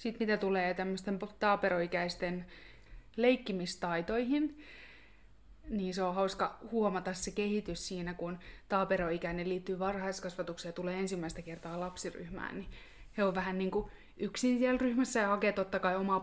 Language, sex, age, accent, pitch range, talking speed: Finnish, female, 20-39, native, 175-210 Hz, 135 wpm